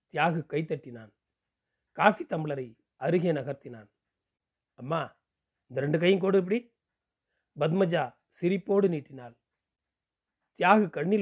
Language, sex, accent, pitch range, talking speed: Tamil, male, native, 135-195 Hz, 95 wpm